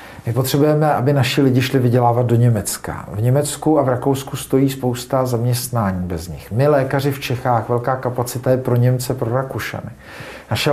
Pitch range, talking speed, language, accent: 115-130 Hz, 175 wpm, Czech, native